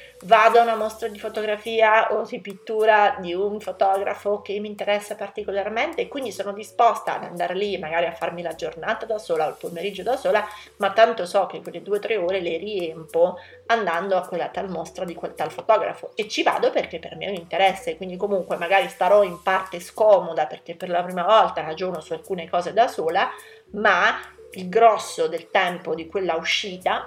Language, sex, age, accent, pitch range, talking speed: Italian, female, 30-49, native, 175-225 Hz, 200 wpm